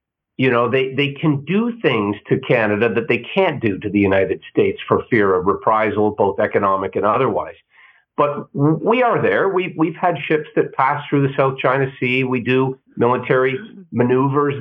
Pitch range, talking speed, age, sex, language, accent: 115-155 Hz, 180 wpm, 50-69, male, English, American